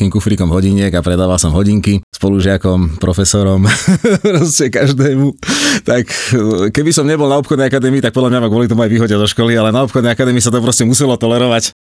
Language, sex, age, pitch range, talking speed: Slovak, male, 30-49, 100-125 Hz, 190 wpm